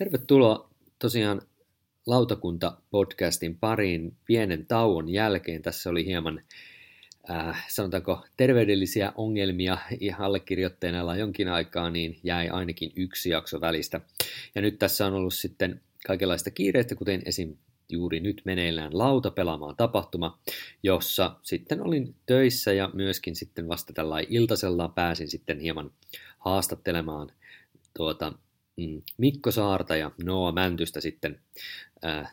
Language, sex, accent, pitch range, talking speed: Finnish, male, native, 85-105 Hz, 115 wpm